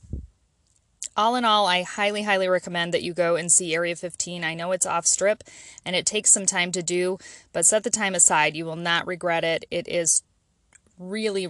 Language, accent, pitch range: English, American, 170-215 Hz